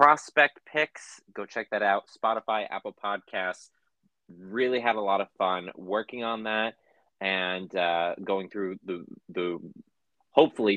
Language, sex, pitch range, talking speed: English, male, 95-120 Hz, 140 wpm